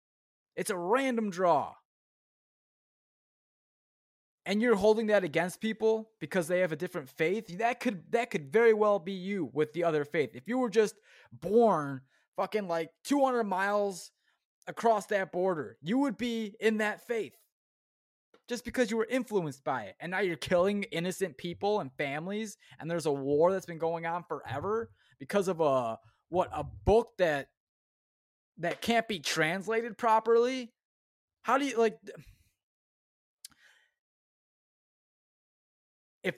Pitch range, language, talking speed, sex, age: 160-225 Hz, English, 145 wpm, male, 20-39